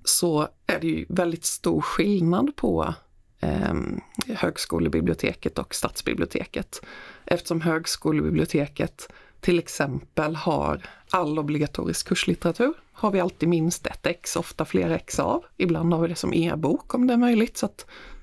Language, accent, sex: Swedish, native, female